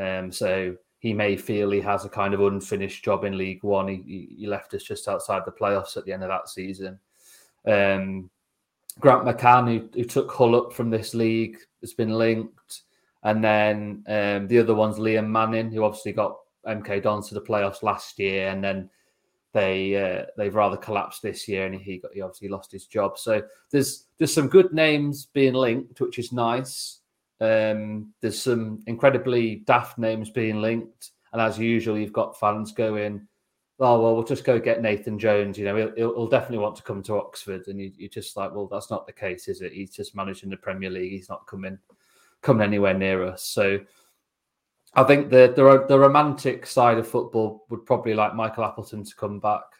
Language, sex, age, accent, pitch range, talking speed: English, male, 30-49, British, 100-115 Hz, 200 wpm